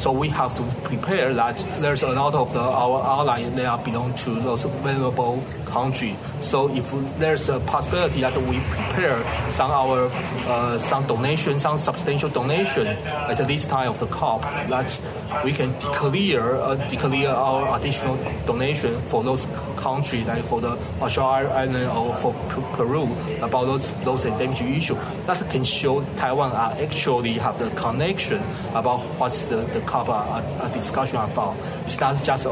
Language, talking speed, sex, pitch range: English, 160 wpm, male, 120-140 Hz